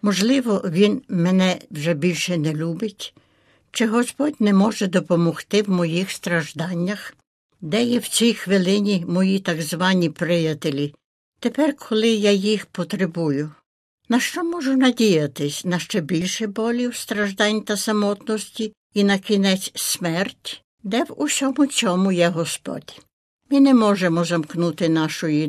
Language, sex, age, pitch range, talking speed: Ukrainian, female, 60-79, 170-215 Hz, 130 wpm